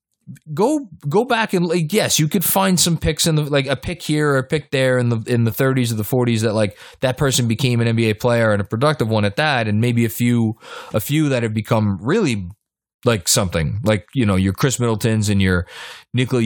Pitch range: 110-150 Hz